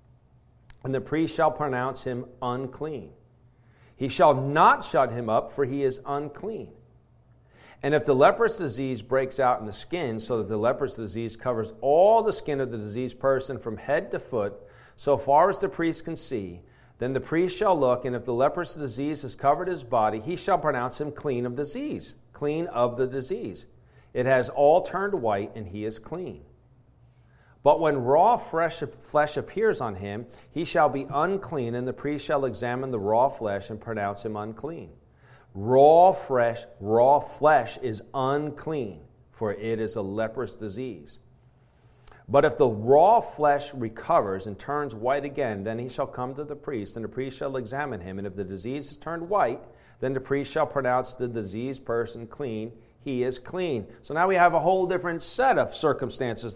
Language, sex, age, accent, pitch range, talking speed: English, male, 50-69, American, 115-145 Hz, 185 wpm